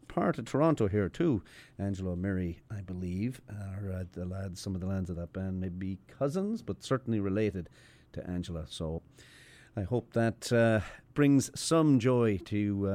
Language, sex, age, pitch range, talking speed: English, male, 40-59, 90-115 Hz, 175 wpm